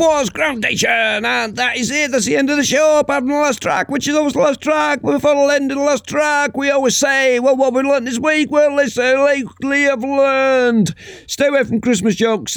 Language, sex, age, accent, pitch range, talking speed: English, male, 50-69, British, 180-270 Hz, 225 wpm